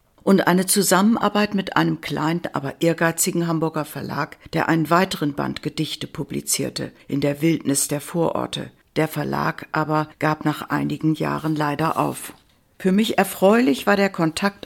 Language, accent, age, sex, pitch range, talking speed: German, German, 60-79, female, 155-195 Hz, 145 wpm